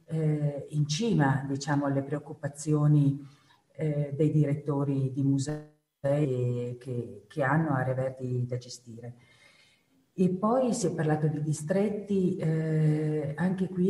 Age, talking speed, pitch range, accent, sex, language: 50-69, 115 wpm, 135-160 Hz, native, female, Italian